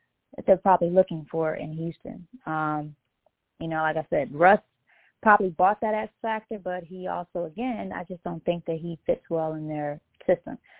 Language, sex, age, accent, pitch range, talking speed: English, female, 20-39, American, 155-185 Hz, 190 wpm